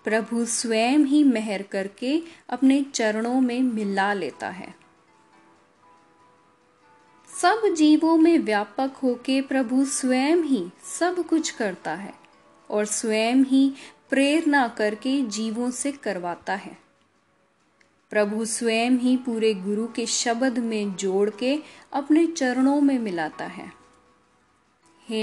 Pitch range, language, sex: 220-285 Hz, Hindi, female